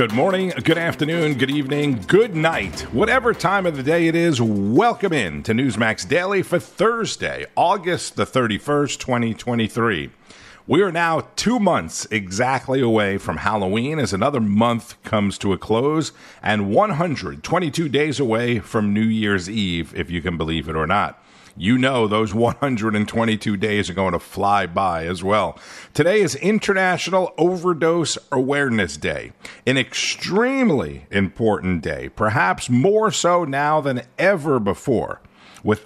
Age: 50-69